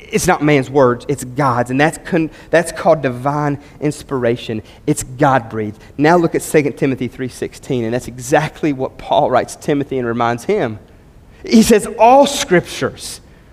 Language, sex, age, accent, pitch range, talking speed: English, male, 30-49, American, 165-255 Hz, 155 wpm